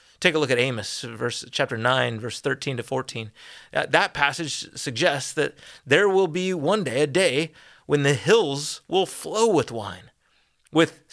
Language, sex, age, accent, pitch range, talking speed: English, male, 30-49, American, 110-155 Hz, 165 wpm